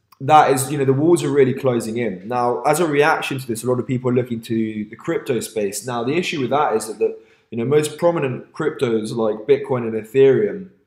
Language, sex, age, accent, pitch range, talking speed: English, male, 20-39, British, 115-135 Hz, 230 wpm